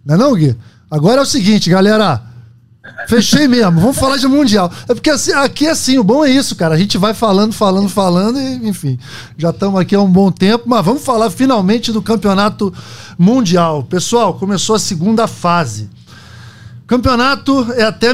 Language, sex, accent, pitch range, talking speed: Portuguese, male, Brazilian, 170-230 Hz, 180 wpm